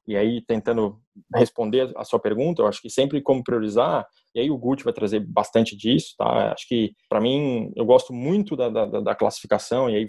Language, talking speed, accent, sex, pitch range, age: Portuguese, 210 wpm, Brazilian, male, 115-135 Hz, 20-39